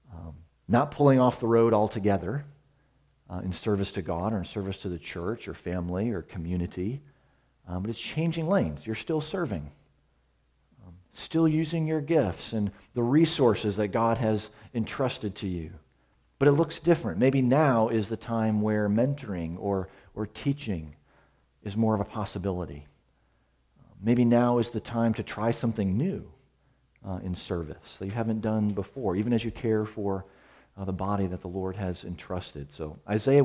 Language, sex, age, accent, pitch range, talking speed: English, male, 40-59, American, 90-130 Hz, 170 wpm